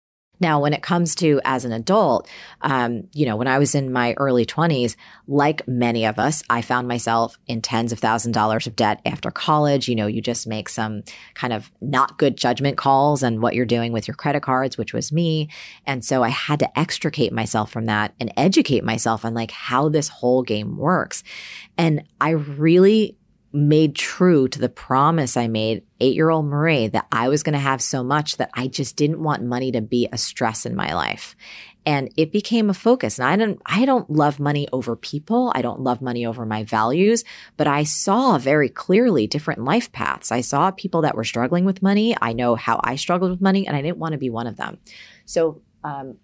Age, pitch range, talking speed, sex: 30-49, 115-155 Hz, 210 wpm, female